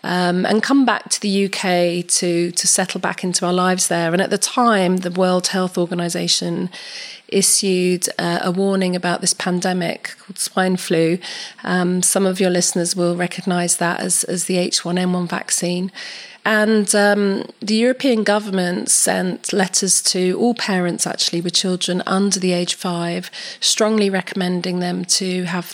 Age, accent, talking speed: 30-49, British, 160 wpm